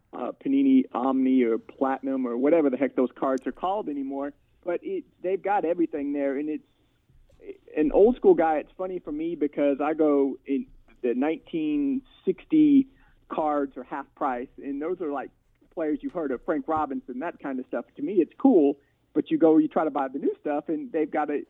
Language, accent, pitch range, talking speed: English, American, 135-180 Hz, 200 wpm